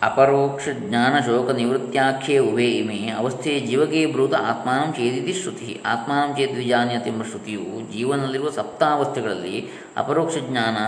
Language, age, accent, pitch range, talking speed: Kannada, 20-39, native, 120-140 Hz, 105 wpm